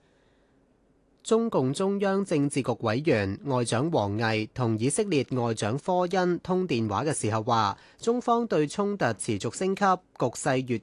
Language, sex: Chinese, male